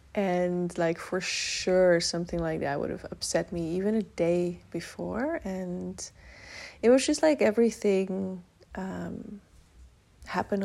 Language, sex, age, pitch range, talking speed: English, female, 20-39, 180-235 Hz, 130 wpm